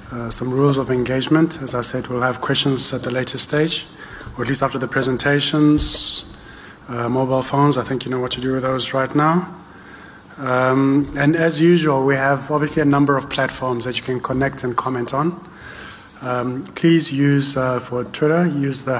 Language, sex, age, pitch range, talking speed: English, male, 30-49, 115-140 Hz, 195 wpm